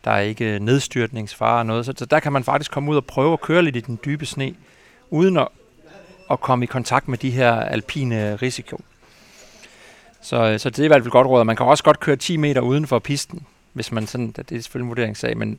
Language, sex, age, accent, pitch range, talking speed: Danish, male, 40-59, native, 115-140 Hz, 225 wpm